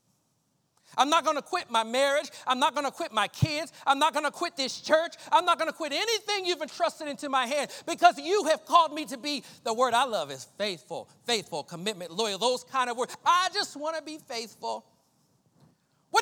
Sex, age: male, 40-59